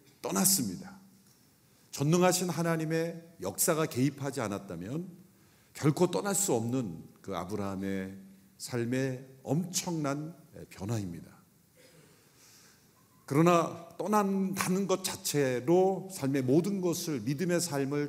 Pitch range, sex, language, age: 115-165 Hz, male, Korean, 50-69